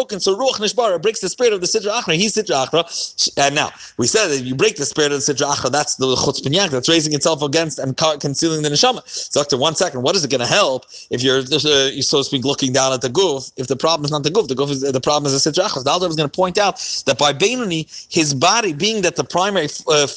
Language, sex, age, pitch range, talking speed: English, male, 30-49, 145-205 Hz, 275 wpm